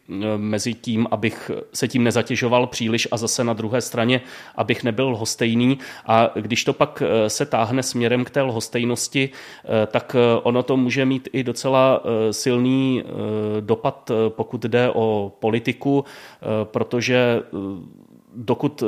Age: 30-49